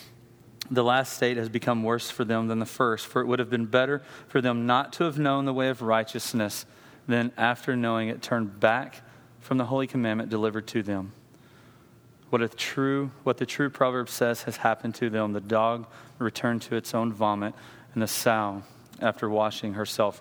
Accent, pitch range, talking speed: American, 115-135 Hz, 185 wpm